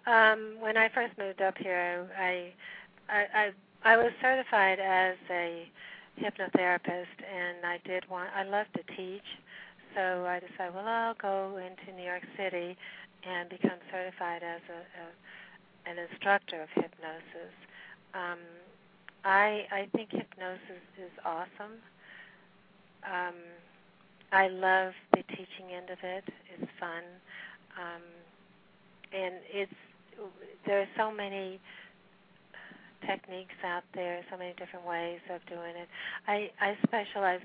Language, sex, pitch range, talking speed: English, female, 175-195 Hz, 130 wpm